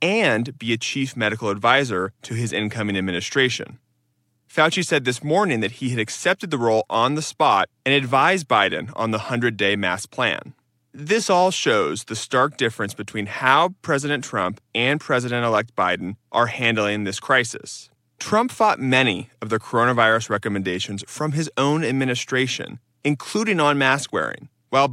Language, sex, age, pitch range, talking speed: English, male, 30-49, 105-145 Hz, 150 wpm